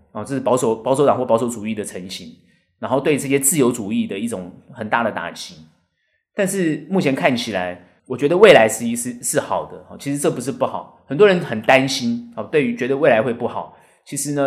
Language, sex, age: Chinese, male, 30-49